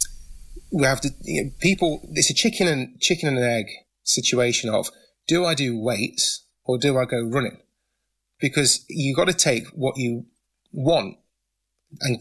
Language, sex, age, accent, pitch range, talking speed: English, male, 30-49, British, 120-150 Hz, 155 wpm